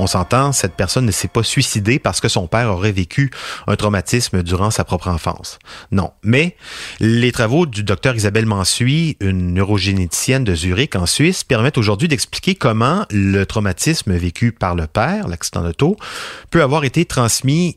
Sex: male